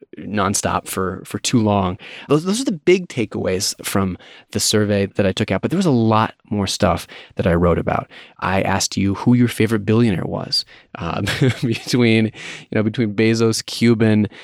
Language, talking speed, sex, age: English, 185 wpm, male, 30-49